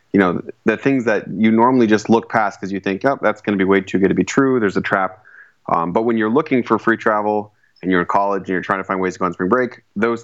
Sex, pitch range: male, 95-110 Hz